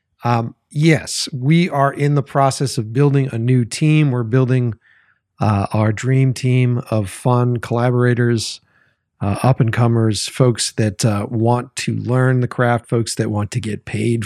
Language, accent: English, American